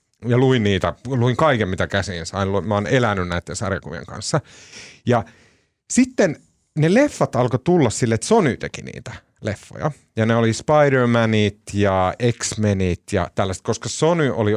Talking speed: 155 wpm